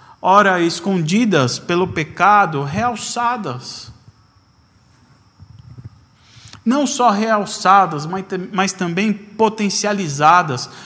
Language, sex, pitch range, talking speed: Portuguese, male, 130-205 Hz, 60 wpm